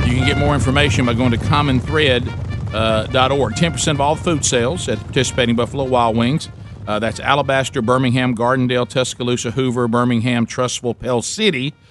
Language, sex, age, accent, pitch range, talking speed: English, male, 50-69, American, 110-130 Hz, 160 wpm